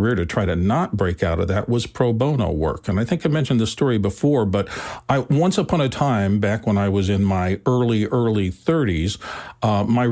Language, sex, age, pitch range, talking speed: English, male, 50-69, 100-130 Hz, 220 wpm